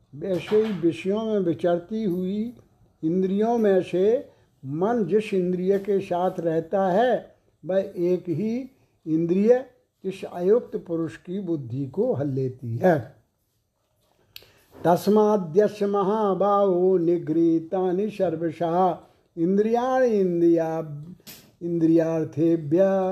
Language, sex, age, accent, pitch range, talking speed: Hindi, male, 60-79, native, 165-210 Hz, 95 wpm